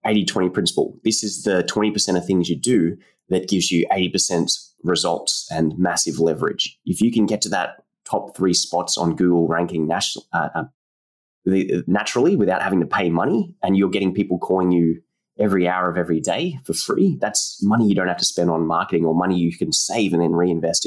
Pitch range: 85-100 Hz